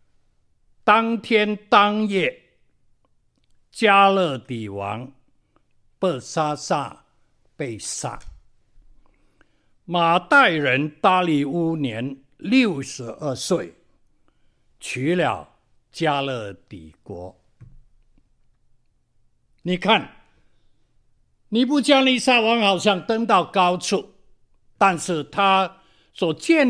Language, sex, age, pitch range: Chinese, male, 60-79, 120-195 Hz